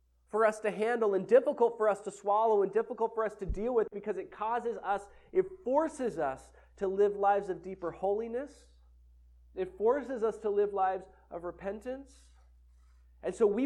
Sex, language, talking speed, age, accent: male, English, 180 wpm, 30-49, American